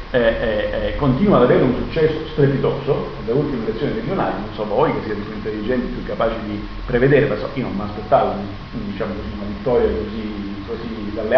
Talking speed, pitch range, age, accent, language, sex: 190 wpm, 115-140 Hz, 40-59, native, Italian, male